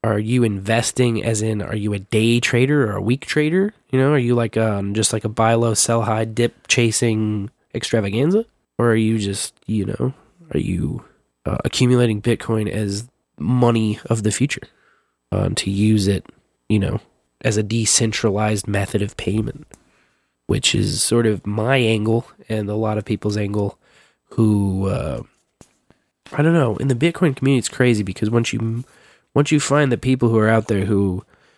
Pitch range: 110-130 Hz